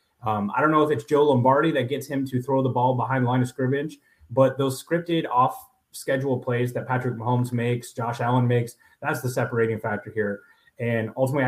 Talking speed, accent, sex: 200 wpm, American, male